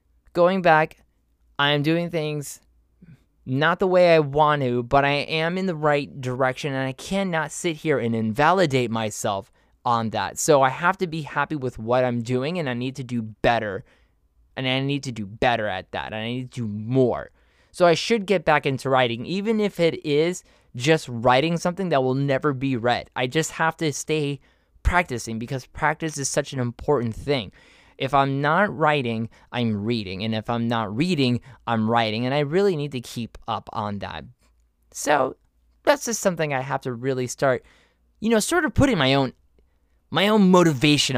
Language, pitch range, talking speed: English, 120-165 Hz, 190 wpm